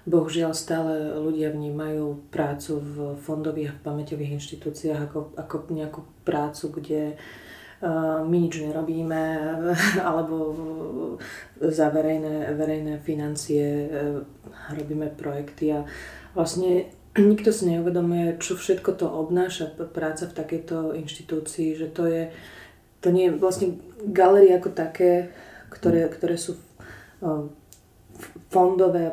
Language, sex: Slovak, female